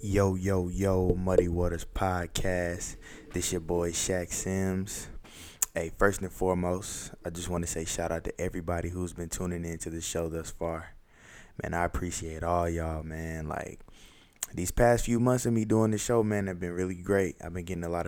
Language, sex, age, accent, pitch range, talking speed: English, male, 20-39, American, 85-95 Hz, 195 wpm